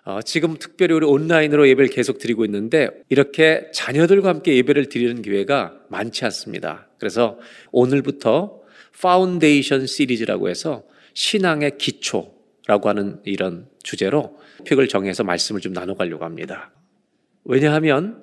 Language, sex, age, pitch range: Korean, male, 40-59, 125-180 Hz